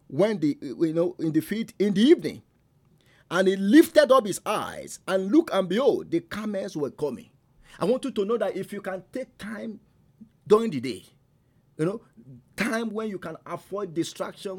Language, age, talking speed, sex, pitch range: English, 50-69, 190 wpm, male, 145-205 Hz